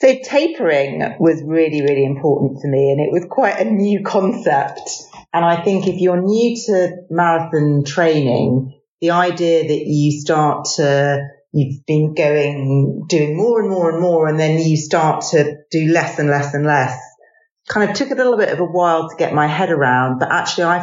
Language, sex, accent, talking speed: English, female, British, 195 wpm